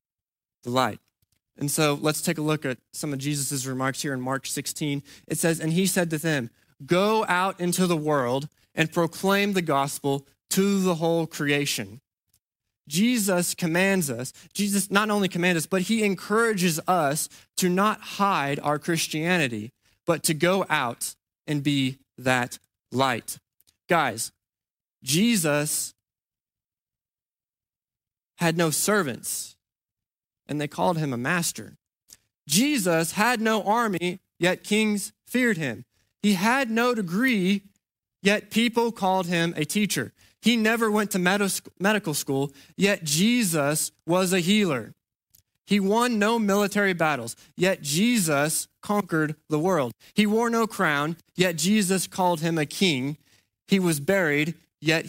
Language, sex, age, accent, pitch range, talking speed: English, male, 20-39, American, 140-195 Hz, 135 wpm